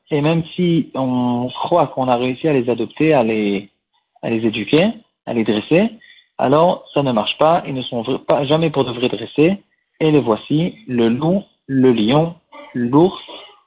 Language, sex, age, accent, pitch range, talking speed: French, male, 50-69, French, 125-155 Hz, 185 wpm